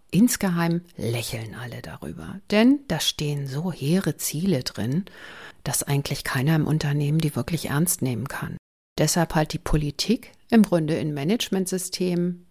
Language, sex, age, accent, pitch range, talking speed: German, female, 50-69, German, 150-200 Hz, 140 wpm